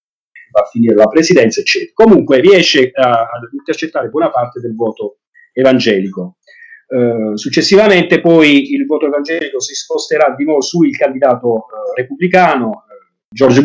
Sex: male